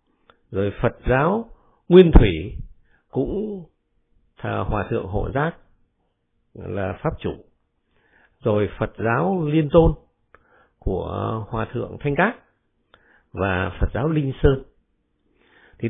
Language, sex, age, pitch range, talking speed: Vietnamese, male, 50-69, 100-160 Hz, 115 wpm